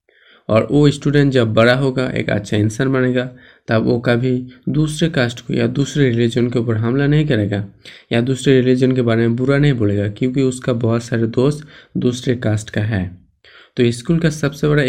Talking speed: 195 wpm